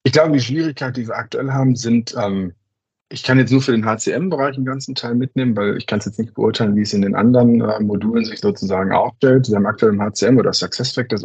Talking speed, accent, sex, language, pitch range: 240 wpm, German, male, English, 100-125 Hz